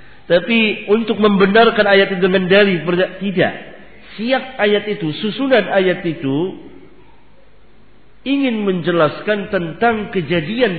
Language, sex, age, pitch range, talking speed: Indonesian, male, 50-69, 150-205 Hz, 100 wpm